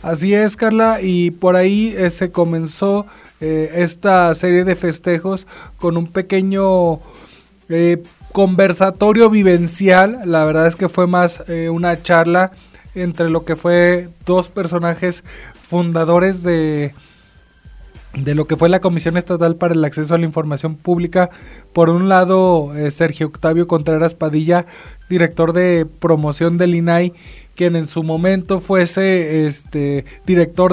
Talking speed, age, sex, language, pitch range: 140 wpm, 20-39, male, Spanish, 165-185 Hz